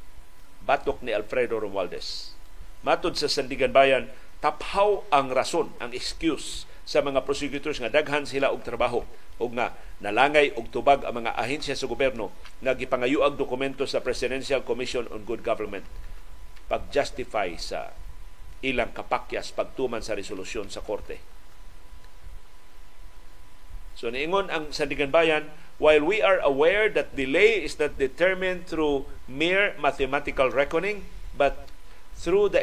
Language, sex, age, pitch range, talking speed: Filipino, male, 50-69, 135-190 Hz, 130 wpm